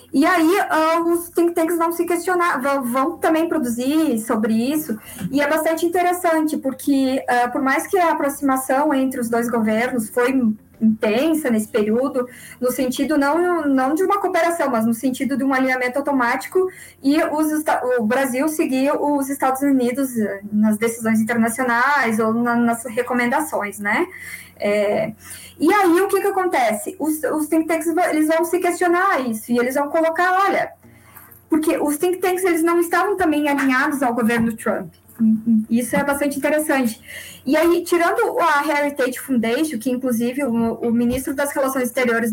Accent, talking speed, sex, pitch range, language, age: Brazilian, 160 wpm, female, 240-320 Hz, Portuguese, 20-39